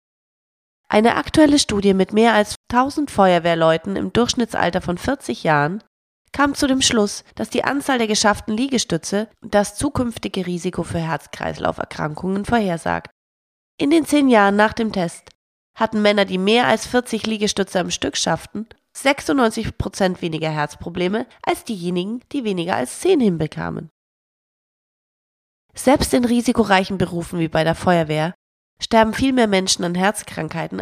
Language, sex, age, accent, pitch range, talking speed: German, female, 30-49, German, 170-235 Hz, 140 wpm